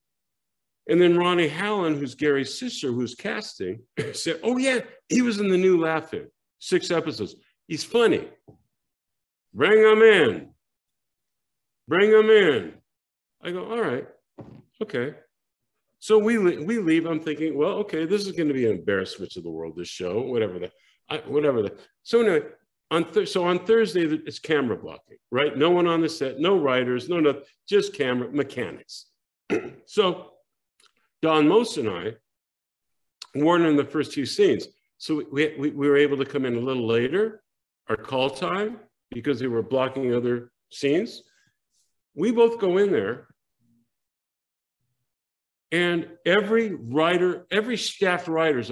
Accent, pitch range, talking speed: American, 140-230 Hz, 155 wpm